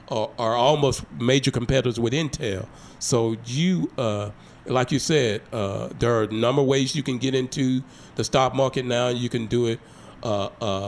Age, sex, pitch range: 40-59, male, 110-130 Hz